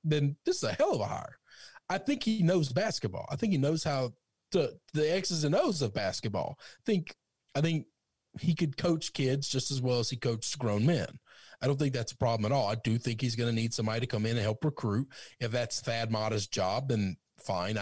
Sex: male